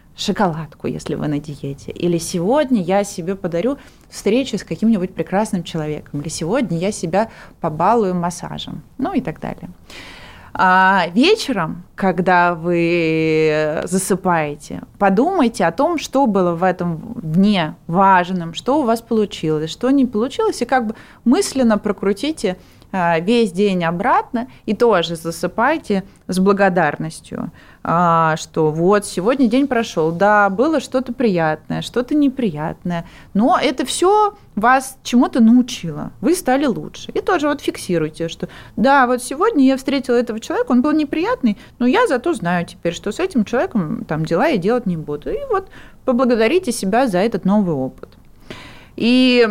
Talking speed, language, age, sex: 140 wpm, Russian, 20-39, female